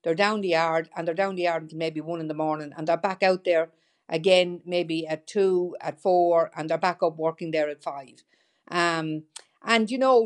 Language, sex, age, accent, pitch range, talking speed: English, female, 50-69, Irish, 160-195 Hz, 220 wpm